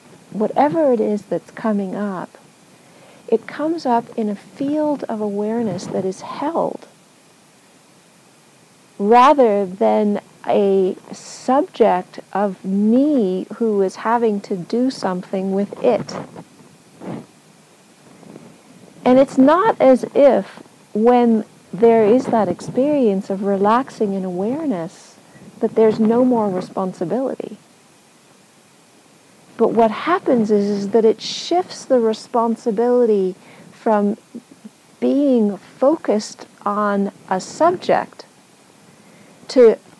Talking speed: 100 wpm